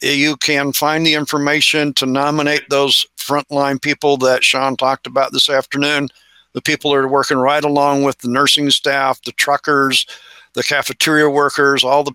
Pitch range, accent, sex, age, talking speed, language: 135-155 Hz, American, male, 50-69, 165 wpm, English